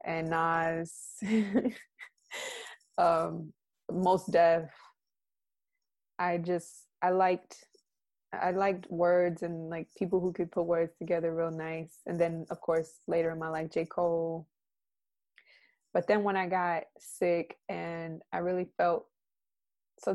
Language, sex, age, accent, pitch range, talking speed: English, female, 20-39, American, 165-190 Hz, 130 wpm